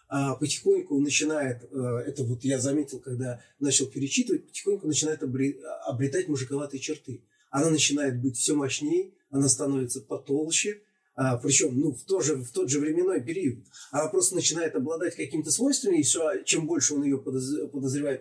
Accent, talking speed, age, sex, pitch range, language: native, 140 wpm, 30-49, male, 125-155 Hz, Russian